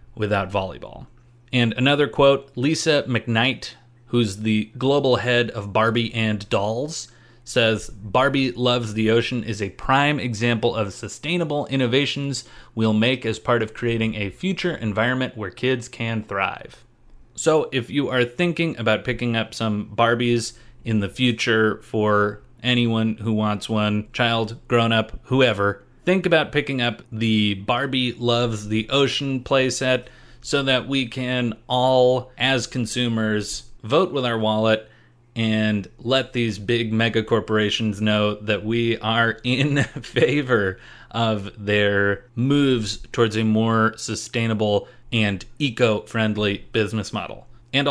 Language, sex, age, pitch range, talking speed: English, male, 30-49, 110-130 Hz, 135 wpm